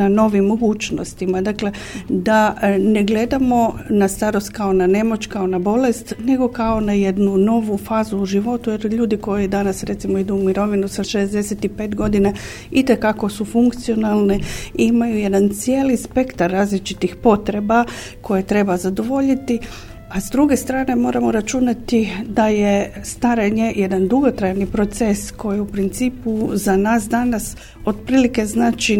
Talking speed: 135 wpm